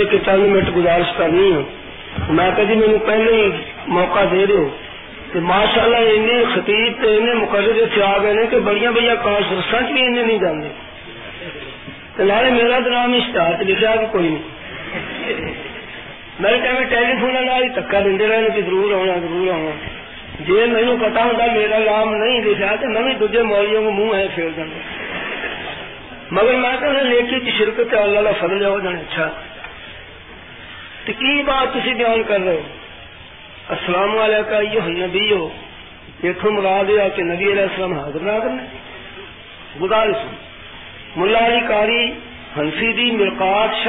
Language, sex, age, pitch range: Urdu, male, 50-69, 195-235 Hz